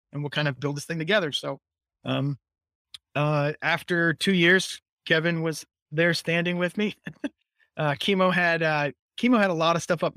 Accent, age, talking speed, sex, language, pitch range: American, 20-39, 185 wpm, male, English, 135-155 Hz